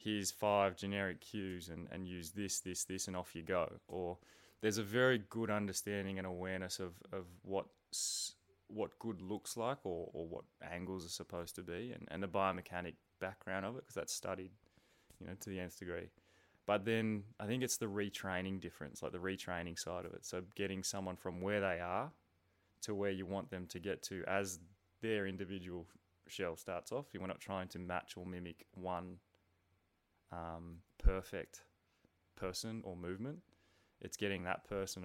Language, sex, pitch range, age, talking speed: English, male, 90-100 Hz, 20-39, 180 wpm